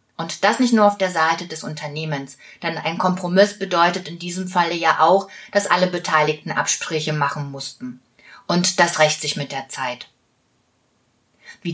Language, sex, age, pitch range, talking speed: German, female, 30-49, 150-205 Hz, 165 wpm